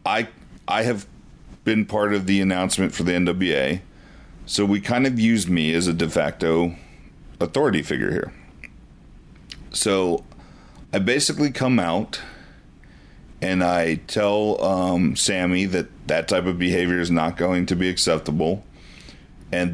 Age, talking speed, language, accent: 40-59, 140 wpm, English, American